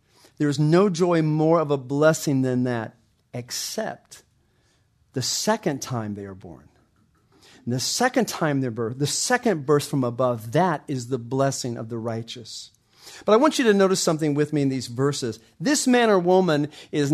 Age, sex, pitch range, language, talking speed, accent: 40-59, male, 135-190 Hz, English, 180 wpm, American